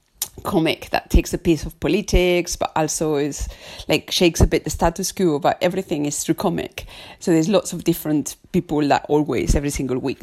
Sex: female